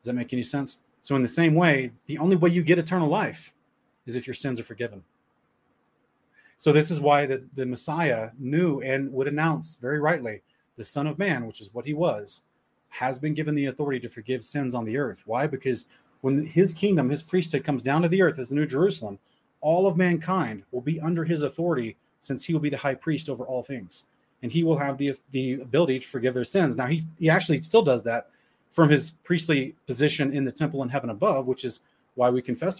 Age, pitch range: 30-49, 125-160 Hz